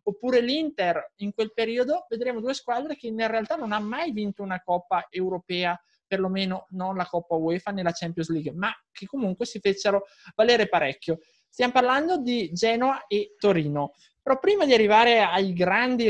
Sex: male